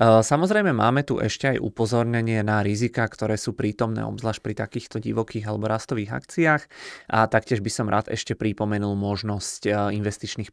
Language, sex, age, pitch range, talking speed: Czech, male, 20-39, 100-110 Hz, 155 wpm